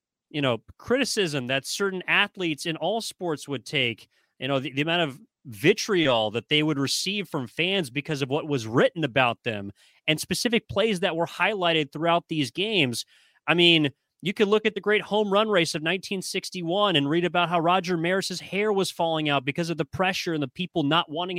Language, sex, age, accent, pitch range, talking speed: English, male, 30-49, American, 150-185 Hz, 200 wpm